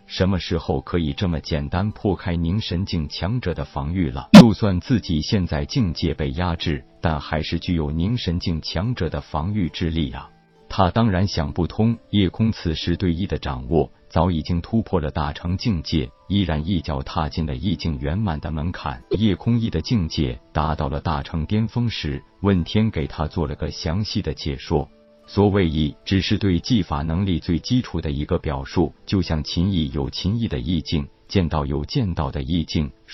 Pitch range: 75-95 Hz